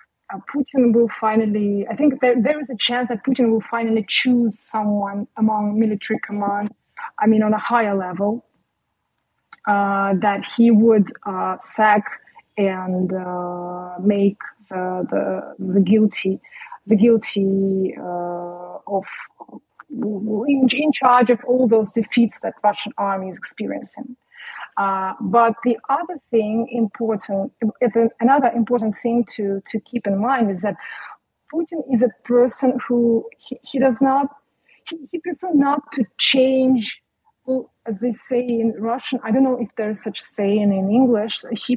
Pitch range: 205-255 Hz